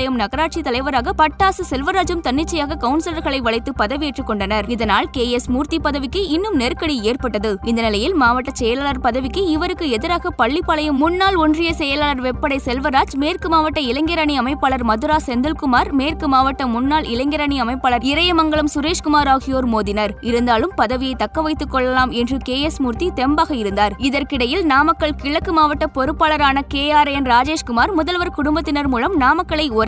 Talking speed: 135 wpm